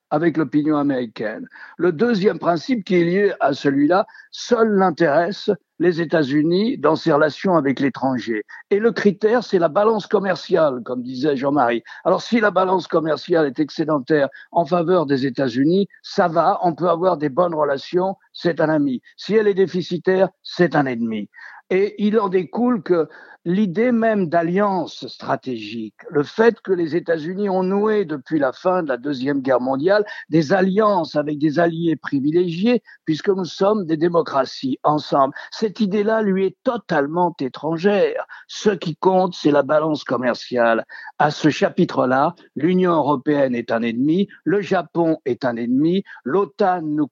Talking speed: 160 wpm